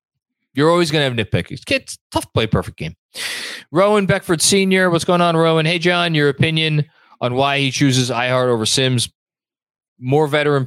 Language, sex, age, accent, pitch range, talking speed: English, male, 20-39, American, 110-150 Hz, 180 wpm